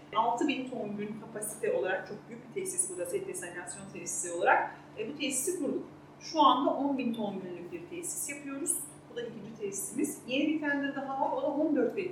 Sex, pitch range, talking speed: female, 215-300 Hz, 190 wpm